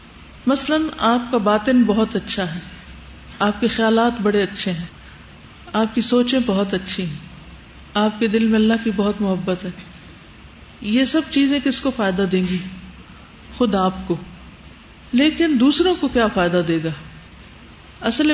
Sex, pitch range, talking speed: female, 185-230 Hz, 155 wpm